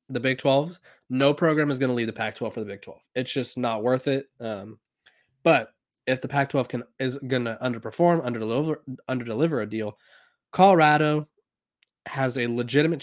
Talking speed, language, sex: 175 wpm, English, male